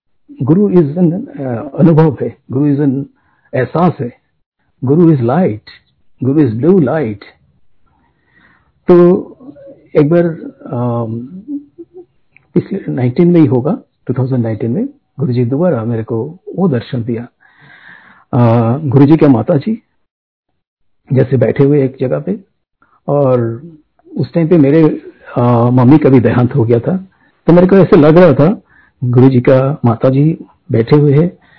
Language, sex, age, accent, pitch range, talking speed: Hindi, male, 60-79, native, 125-165 Hz, 135 wpm